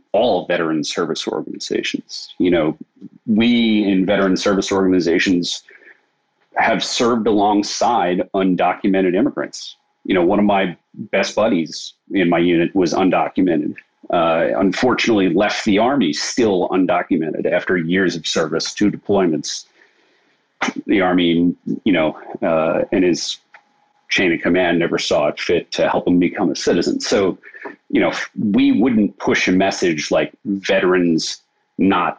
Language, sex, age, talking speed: English, male, 40-59, 135 wpm